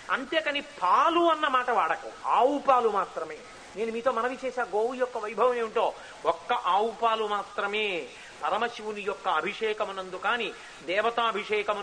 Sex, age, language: male, 30-49, Telugu